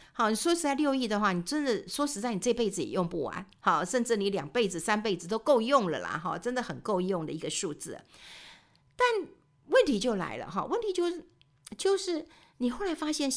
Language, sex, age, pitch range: Chinese, female, 50-69, 185-270 Hz